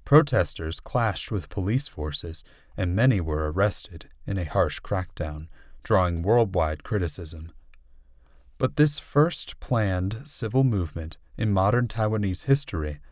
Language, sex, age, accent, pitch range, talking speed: English, male, 30-49, American, 80-115 Hz, 120 wpm